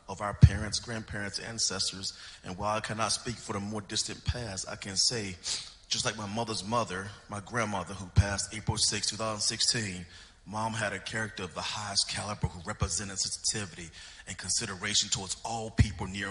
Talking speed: 175 wpm